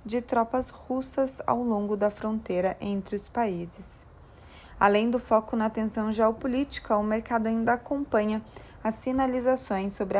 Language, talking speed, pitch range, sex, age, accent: Portuguese, 135 wpm, 195-235 Hz, female, 20-39, Brazilian